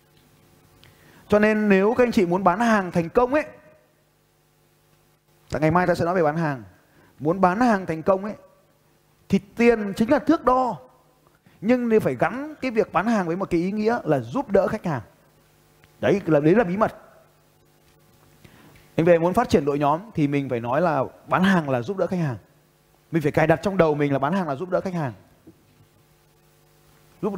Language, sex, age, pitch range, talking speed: Vietnamese, male, 20-39, 165-230 Hz, 200 wpm